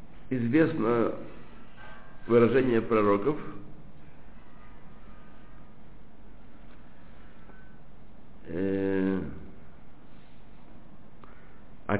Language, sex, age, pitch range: Russian, male, 60-79, 100-140 Hz